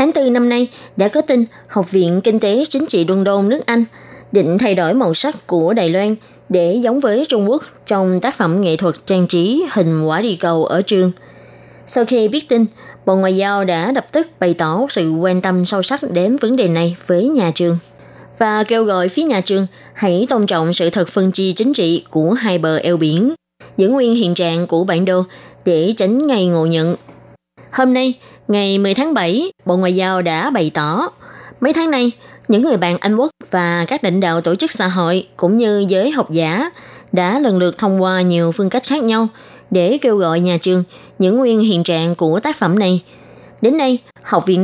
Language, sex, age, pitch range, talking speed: Vietnamese, female, 20-39, 175-240 Hz, 215 wpm